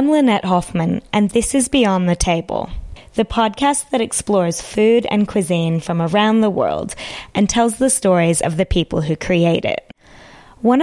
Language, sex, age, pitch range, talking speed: English, female, 20-39, 170-215 Hz, 170 wpm